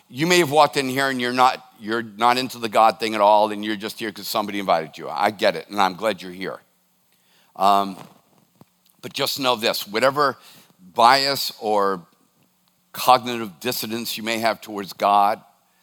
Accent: American